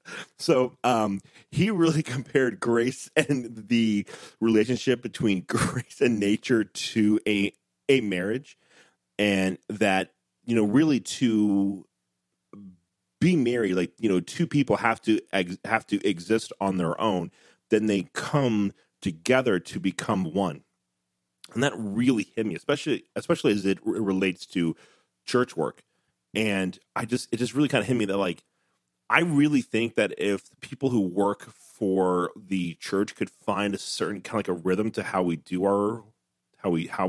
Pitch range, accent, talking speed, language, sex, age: 95-115 Hz, American, 160 wpm, English, male, 30-49